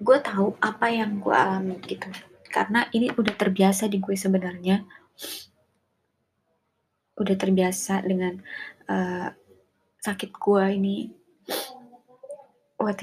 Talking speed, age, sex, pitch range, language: 105 wpm, 20-39, female, 190-230 Hz, Indonesian